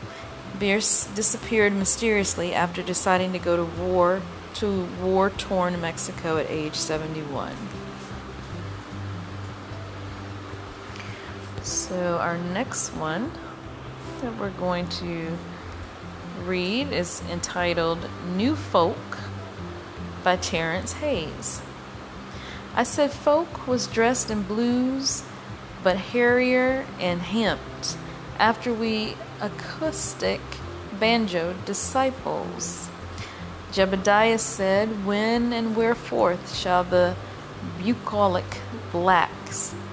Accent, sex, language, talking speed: American, female, English, 85 wpm